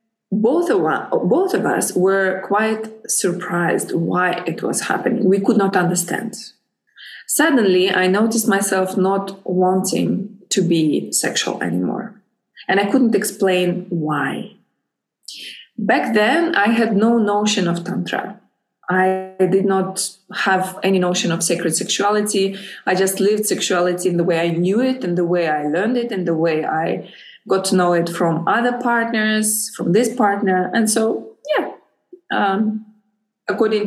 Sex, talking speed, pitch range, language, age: female, 145 wpm, 180-220 Hz, Dutch, 20-39